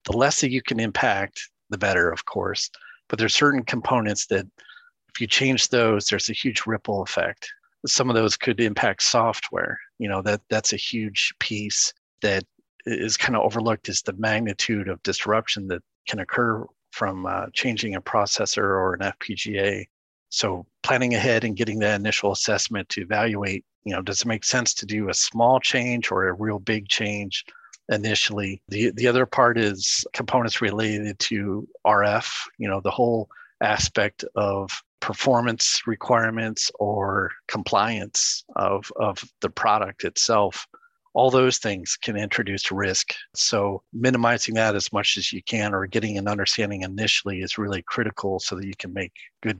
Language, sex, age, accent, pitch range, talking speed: English, male, 40-59, American, 100-115 Hz, 165 wpm